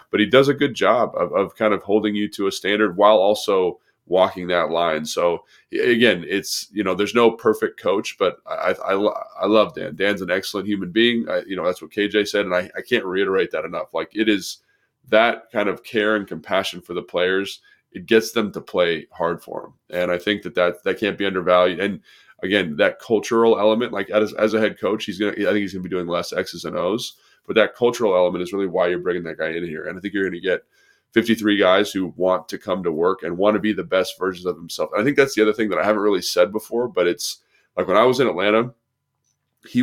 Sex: male